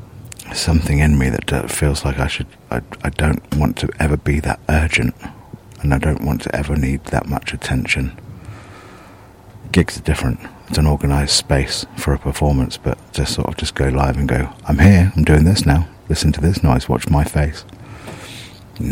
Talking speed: 190 wpm